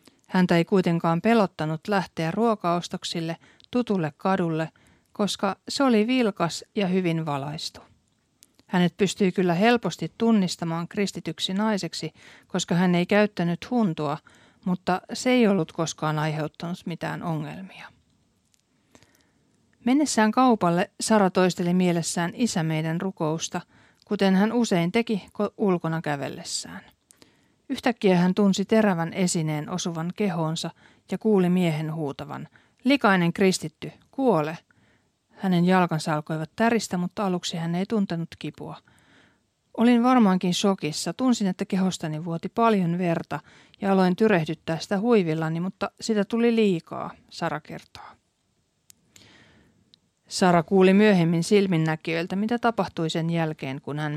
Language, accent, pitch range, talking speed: Finnish, native, 165-205 Hz, 115 wpm